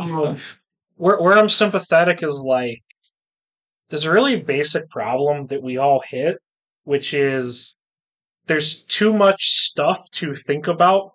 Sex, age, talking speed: male, 20-39, 135 wpm